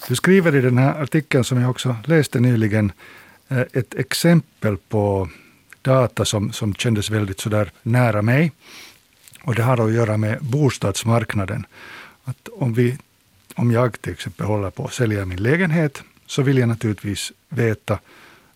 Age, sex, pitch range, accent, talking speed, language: 60-79, male, 105-130 Hz, Finnish, 155 wpm, Swedish